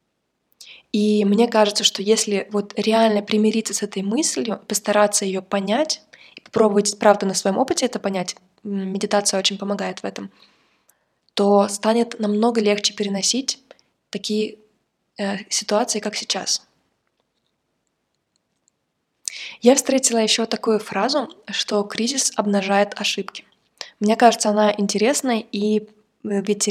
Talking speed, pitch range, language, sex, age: 115 wpm, 200-220 Hz, Russian, female, 20-39